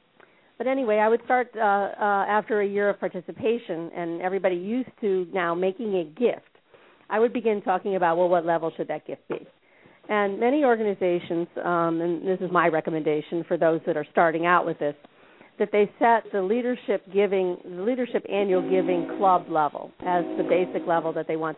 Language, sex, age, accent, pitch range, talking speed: English, female, 50-69, American, 165-195 Hz, 190 wpm